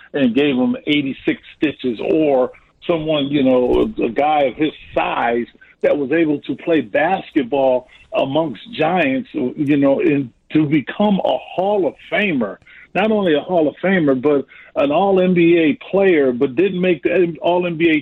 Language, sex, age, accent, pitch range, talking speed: English, male, 50-69, American, 150-190 Hz, 165 wpm